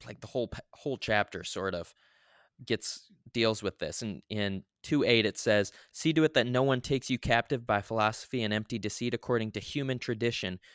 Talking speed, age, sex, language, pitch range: 195 wpm, 20-39, male, English, 100-120 Hz